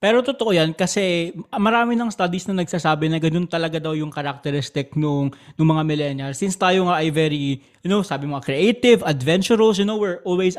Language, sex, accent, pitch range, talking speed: Filipino, male, native, 150-200 Hz, 195 wpm